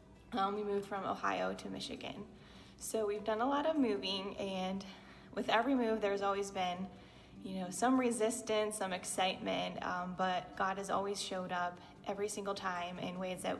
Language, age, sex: English, 20-39, female